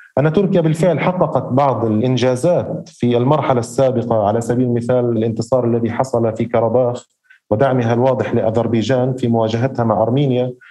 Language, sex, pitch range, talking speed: Arabic, male, 120-150 Hz, 135 wpm